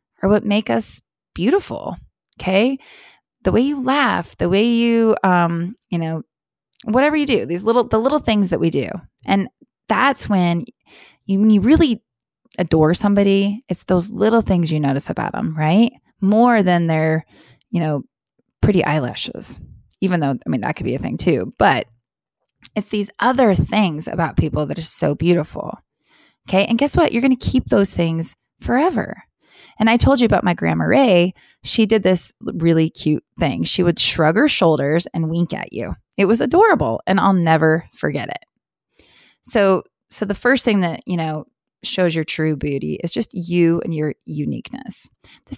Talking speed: 175 wpm